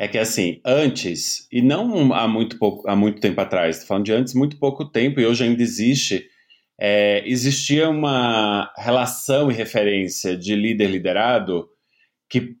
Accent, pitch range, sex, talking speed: Brazilian, 115-150 Hz, male, 140 wpm